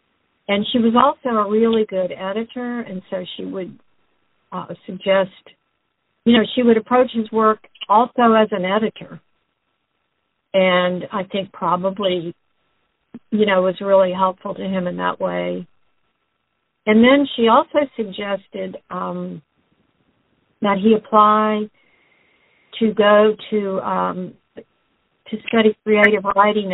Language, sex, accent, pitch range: English, female, American, 185-215 Hz